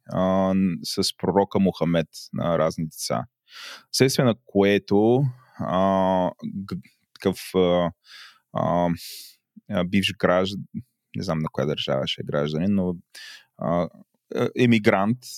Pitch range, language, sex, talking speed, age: 95-120 Hz, Bulgarian, male, 90 wpm, 20-39